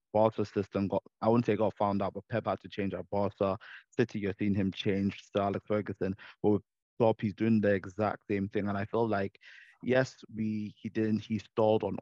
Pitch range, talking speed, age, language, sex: 95-110 Hz, 220 wpm, 20-39, English, male